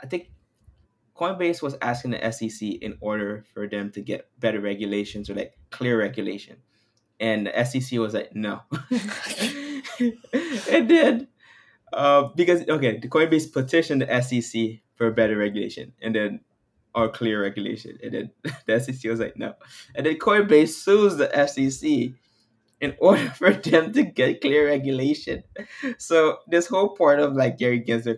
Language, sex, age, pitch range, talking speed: English, male, 20-39, 115-180 Hz, 155 wpm